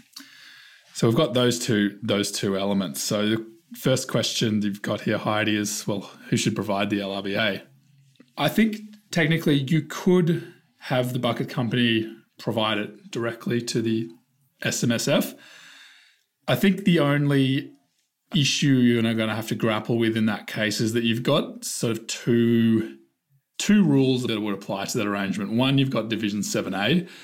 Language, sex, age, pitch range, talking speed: English, male, 20-39, 105-135 Hz, 160 wpm